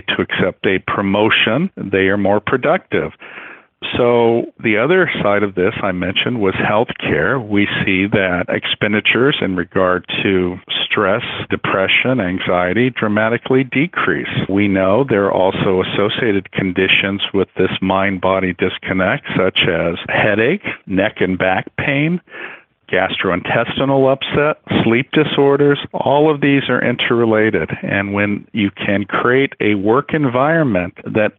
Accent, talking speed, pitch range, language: American, 130 wpm, 95-115 Hz, English